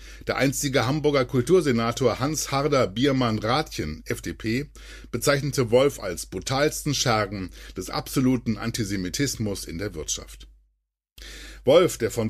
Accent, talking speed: German, 105 wpm